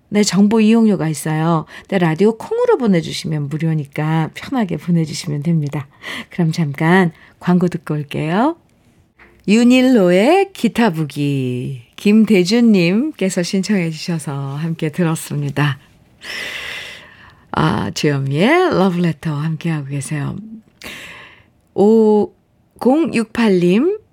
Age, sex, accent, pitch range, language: 50-69, female, native, 165-240 Hz, Korean